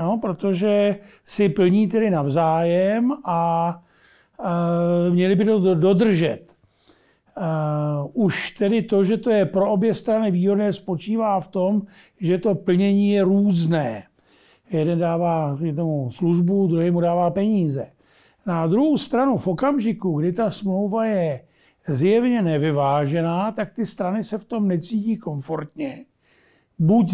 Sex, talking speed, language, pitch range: male, 130 wpm, Czech, 170-210 Hz